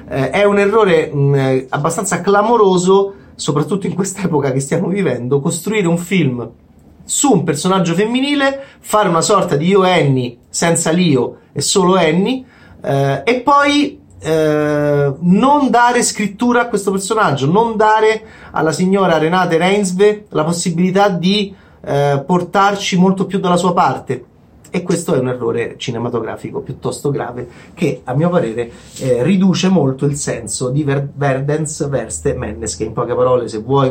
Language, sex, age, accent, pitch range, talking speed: Italian, male, 30-49, native, 130-190 Hz, 150 wpm